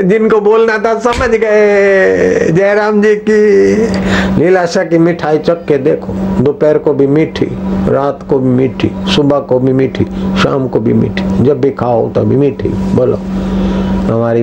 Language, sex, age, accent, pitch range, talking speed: Hindi, male, 50-69, native, 115-190 Hz, 120 wpm